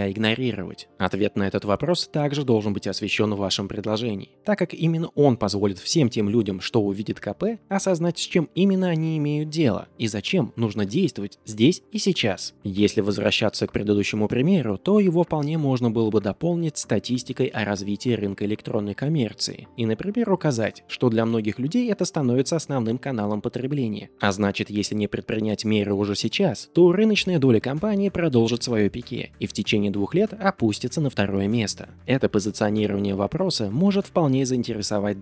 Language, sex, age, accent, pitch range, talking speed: Russian, male, 20-39, native, 105-155 Hz, 165 wpm